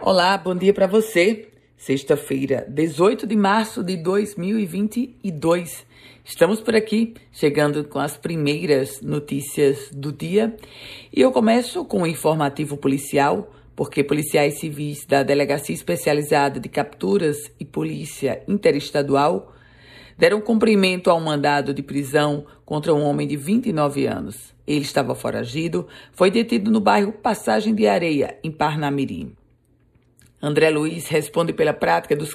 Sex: female